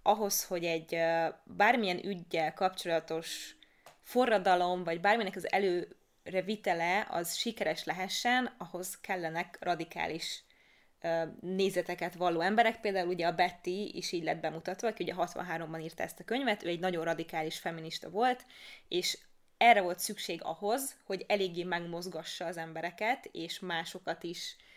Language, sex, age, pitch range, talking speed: Hungarian, female, 20-39, 170-200 Hz, 130 wpm